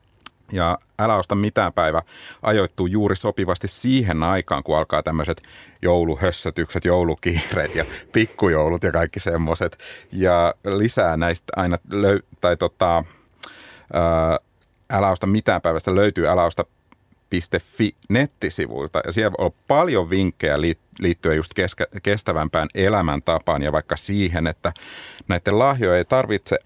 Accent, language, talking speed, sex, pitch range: native, Finnish, 115 wpm, male, 85-100 Hz